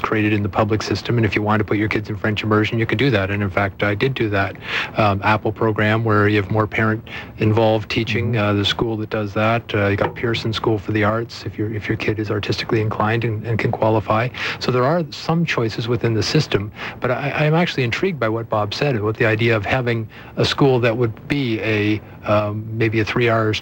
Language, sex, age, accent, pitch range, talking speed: English, male, 50-69, American, 105-120 Hz, 245 wpm